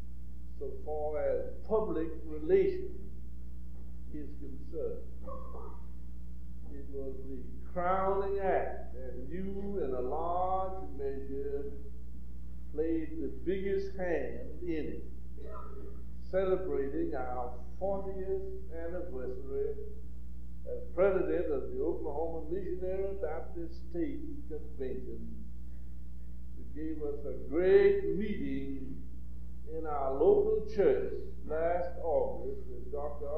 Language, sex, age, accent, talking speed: English, male, 60-79, American, 90 wpm